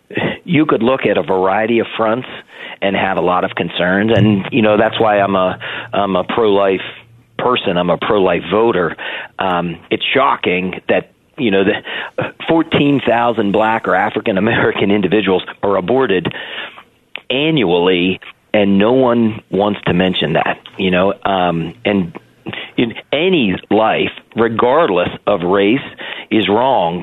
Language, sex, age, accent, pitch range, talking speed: English, male, 40-59, American, 100-125 Hz, 140 wpm